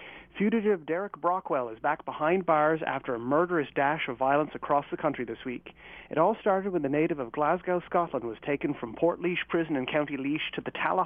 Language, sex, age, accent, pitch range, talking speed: English, male, 40-59, American, 135-170 Hz, 210 wpm